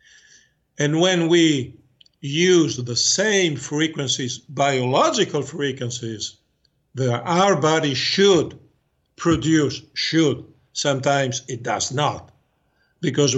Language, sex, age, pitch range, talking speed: English, male, 60-79, 135-165 Hz, 90 wpm